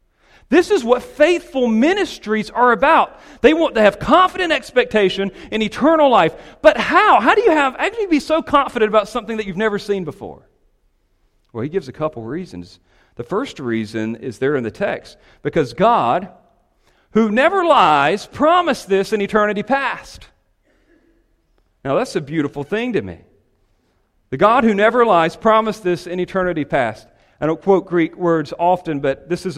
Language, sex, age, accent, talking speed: English, male, 40-59, American, 170 wpm